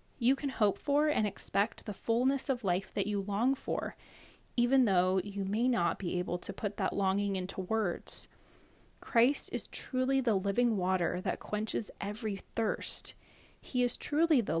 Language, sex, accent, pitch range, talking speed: English, female, American, 185-230 Hz, 170 wpm